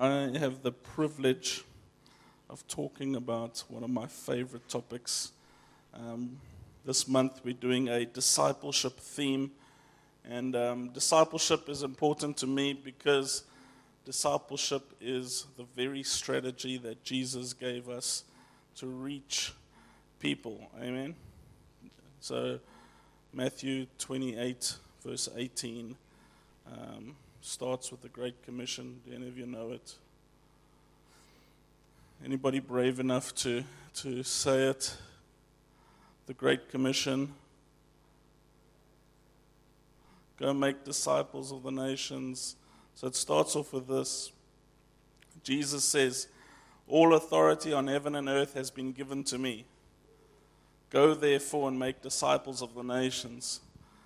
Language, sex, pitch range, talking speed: English, male, 125-140 Hz, 110 wpm